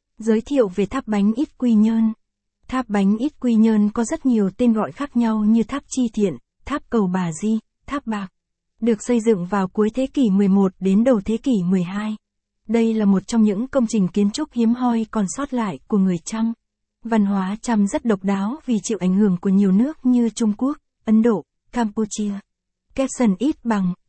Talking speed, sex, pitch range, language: 205 wpm, female, 205-240 Hz, Vietnamese